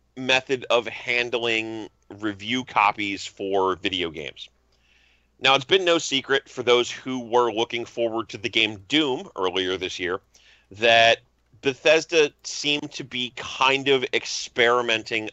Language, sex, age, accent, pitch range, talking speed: English, male, 40-59, American, 100-130 Hz, 135 wpm